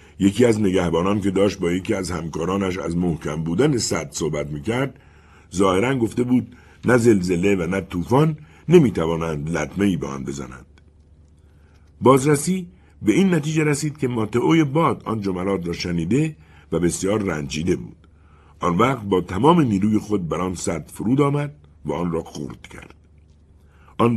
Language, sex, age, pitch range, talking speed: Persian, male, 60-79, 80-110 Hz, 150 wpm